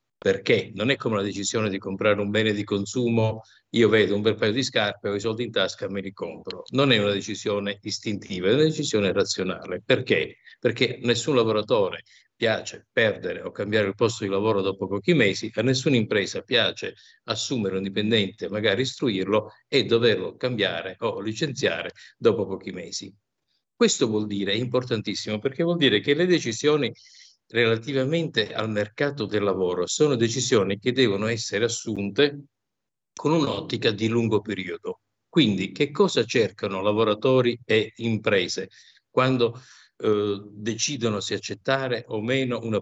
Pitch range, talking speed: 105-135 Hz, 155 wpm